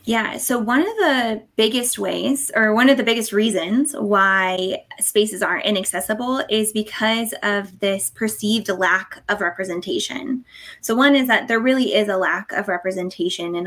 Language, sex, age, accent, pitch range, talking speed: English, female, 20-39, American, 190-225 Hz, 160 wpm